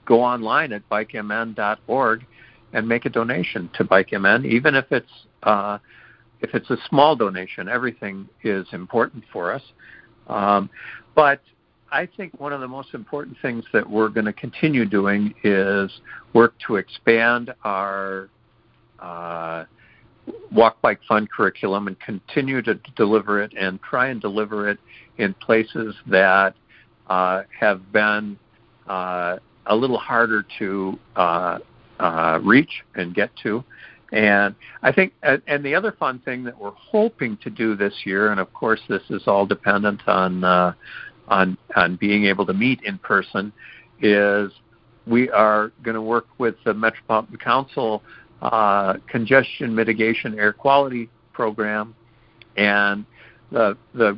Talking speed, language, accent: 145 wpm, English, American